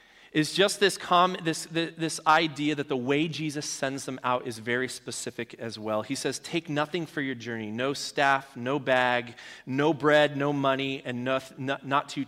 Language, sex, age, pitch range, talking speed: English, male, 30-49, 140-190 Hz, 195 wpm